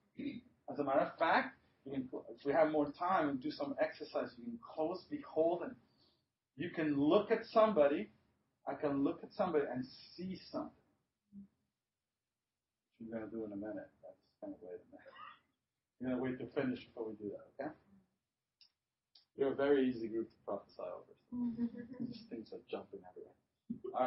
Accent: American